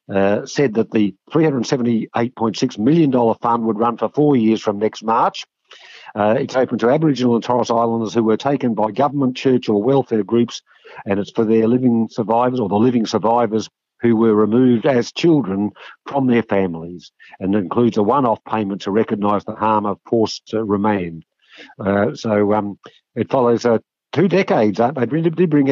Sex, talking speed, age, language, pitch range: male, 175 wpm, 50-69, English, 105-125 Hz